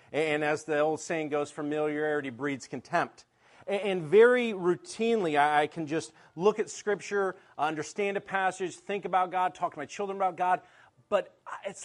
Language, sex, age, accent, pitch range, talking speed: English, male, 40-59, American, 150-190 Hz, 160 wpm